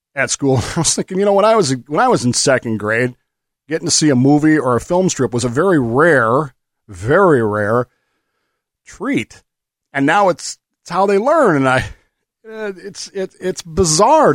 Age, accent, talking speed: 40-59, American, 190 wpm